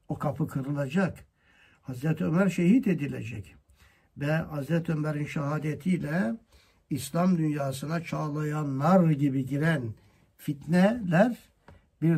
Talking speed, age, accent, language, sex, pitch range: 95 wpm, 60-79, native, Turkish, male, 130-180 Hz